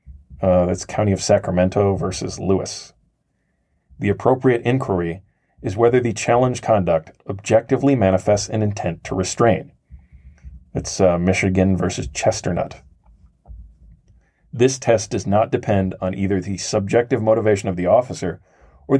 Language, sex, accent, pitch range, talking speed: English, male, American, 90-115 Hz, 125 wpm